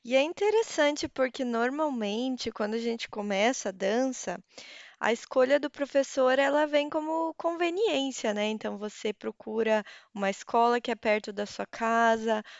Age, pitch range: 20-39, 225-285 Hz